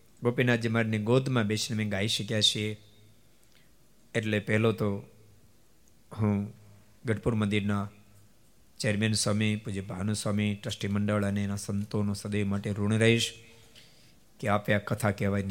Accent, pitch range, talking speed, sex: native, 105-120 Hz, 130 wpm, male